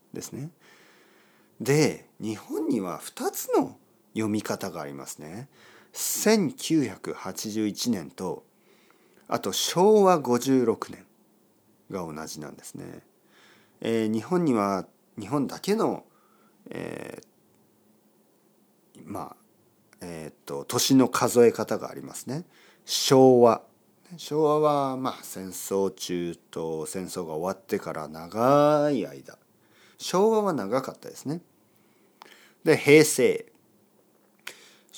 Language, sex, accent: Japanese, male, native